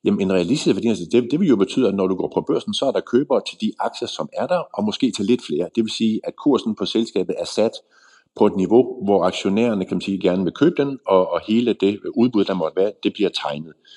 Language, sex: Danish, male